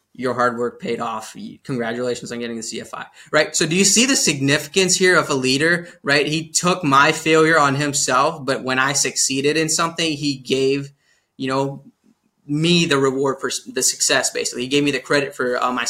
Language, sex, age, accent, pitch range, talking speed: English, male, 20-39, American, 125-145 Hz, 200 wpm